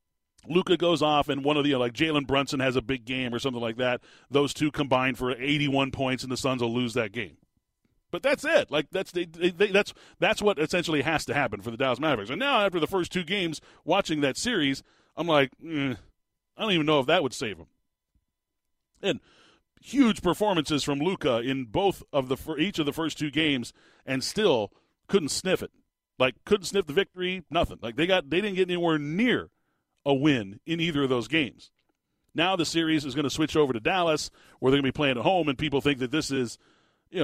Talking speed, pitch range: 220 wpm, 130-180 Hz